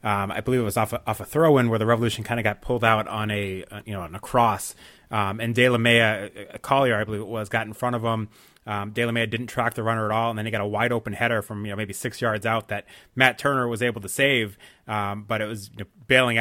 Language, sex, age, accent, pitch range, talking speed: English, male, 30-49, American, 110-125 Hz, 295 wpm